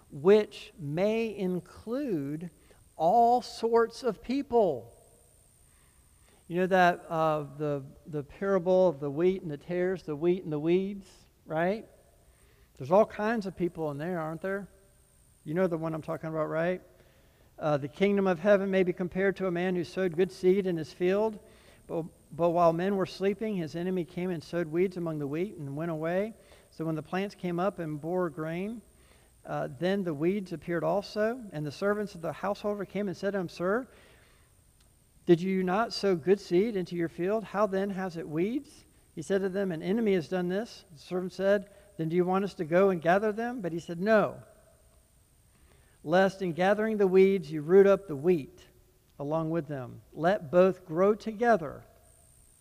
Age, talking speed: 60-79, 185 wpm